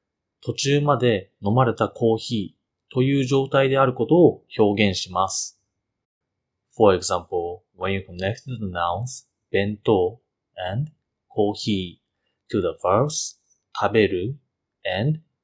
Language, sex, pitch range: Japanese, male, 100-130 Hz